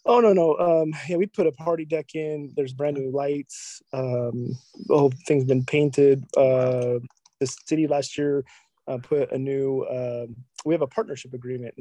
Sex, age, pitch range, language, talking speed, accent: male, 20-39, 125-140 Hz, English, 185 wpm, American